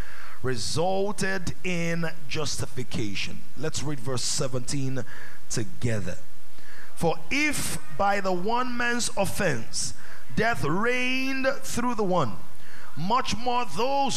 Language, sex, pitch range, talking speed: English, male, 110-185 Hz, 95 wpm